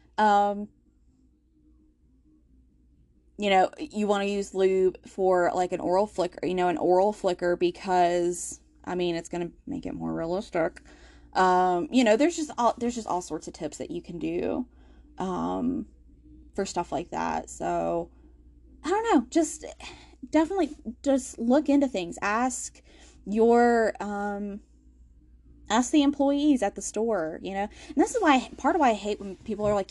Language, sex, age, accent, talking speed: English, female, 10-29, American, 165 wpm